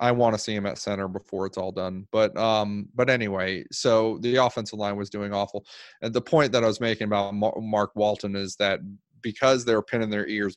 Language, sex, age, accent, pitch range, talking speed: English, male, 30-49, American, 100-120 Hz, 225 wpm